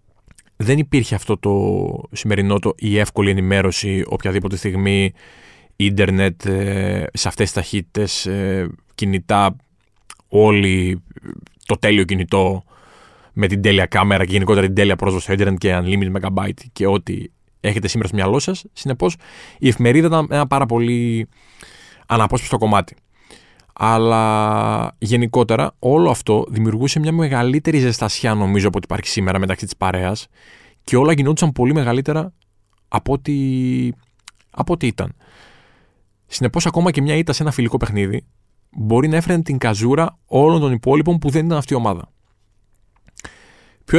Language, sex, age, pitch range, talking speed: Greek, male, 20-39, 100-130 Hz, 140 wpm